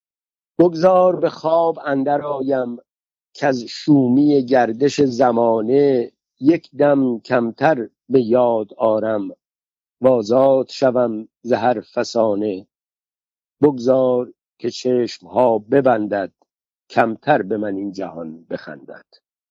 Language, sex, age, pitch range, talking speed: Persian, male, 50-69, 110-140 Hz, 90 wpm